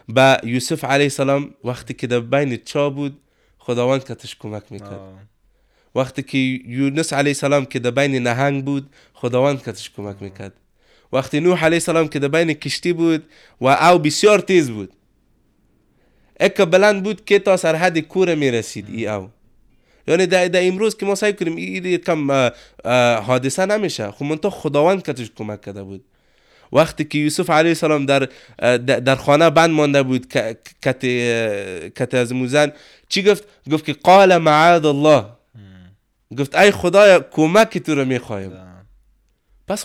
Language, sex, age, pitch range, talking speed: English, male, 20-39, 120-165 Hz, 100 wpm